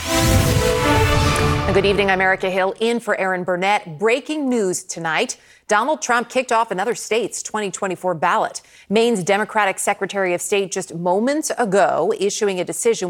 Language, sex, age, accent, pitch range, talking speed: English, female, 30-49, American, 175-225 Hz, 140 wpm